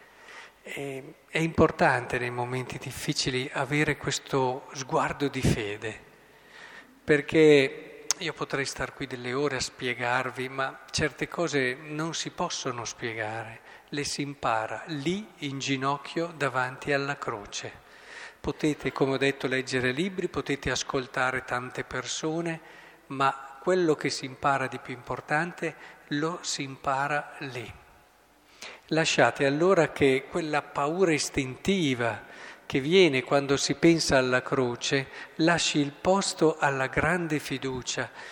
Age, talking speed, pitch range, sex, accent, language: 40-59, 120 wpm, 130-160 Hz, male, native, Italian